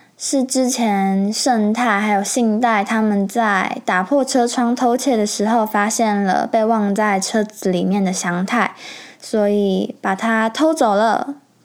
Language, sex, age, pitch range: Chinese, female, 10-29, 200-250 Hz